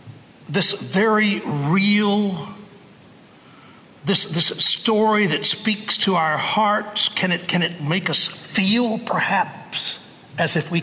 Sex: male